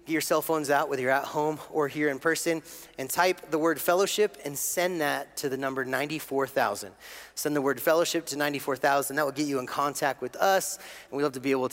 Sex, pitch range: male, 130-165 Hz